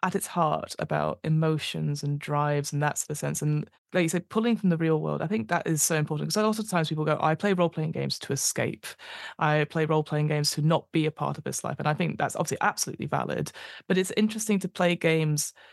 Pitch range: 155-180 Hz